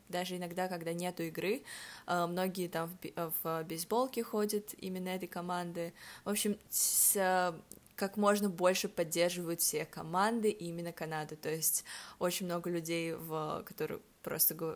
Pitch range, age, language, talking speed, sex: 165-200 Hz, 20-39, Russian, 120 wpm, female